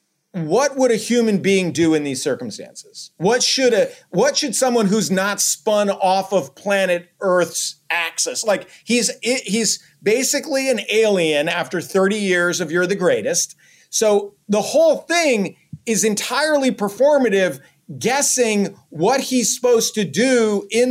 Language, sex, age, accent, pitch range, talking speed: English, male, 40-59, American, 190-255 Hz, 145 wpm